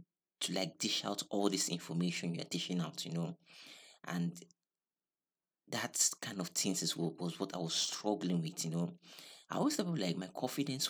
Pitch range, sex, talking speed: 85-90 Hz, male, 175 wpm